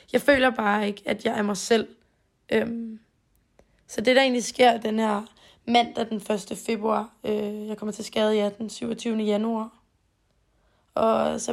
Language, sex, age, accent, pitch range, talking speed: Danish, female, 20-39, native, 210-240 Hz, 170 wpm